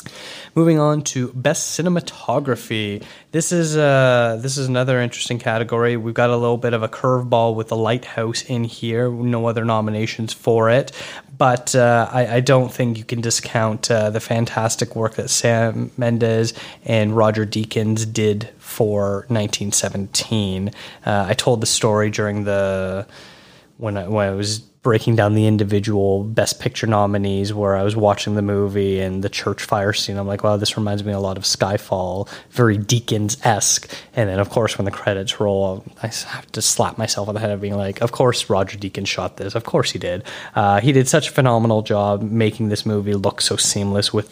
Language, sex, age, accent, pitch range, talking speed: English, male, 20-39, American, 100-120 Hz, 190 wpm